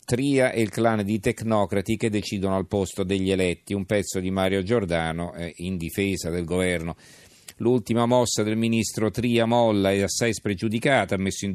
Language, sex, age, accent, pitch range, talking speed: Italian, male, 40-59, native, 90-105 Hz, 170 wpm